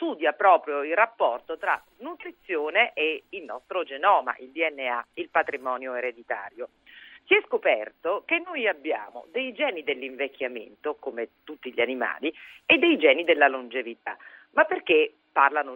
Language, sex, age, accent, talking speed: Italian, female, 40-59, native, 135 wpm